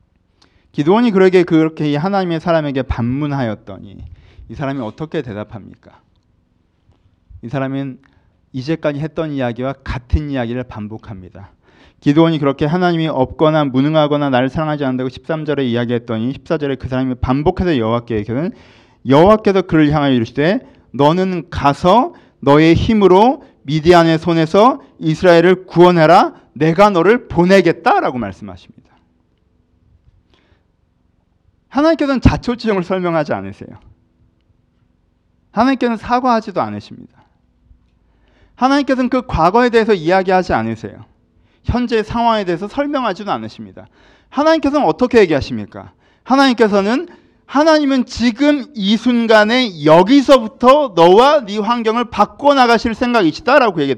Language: Korean